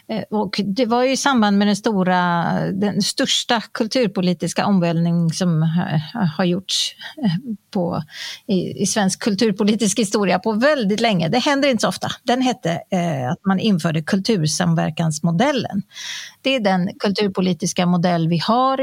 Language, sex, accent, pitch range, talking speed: Swedish, female, native, 175-225 Hz, 135 wpm